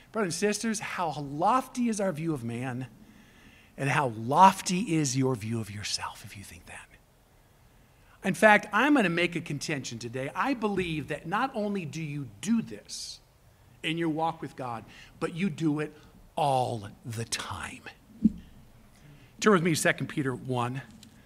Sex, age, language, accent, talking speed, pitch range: male, 50-69, English, American, 165 wpm, 135-195 Hz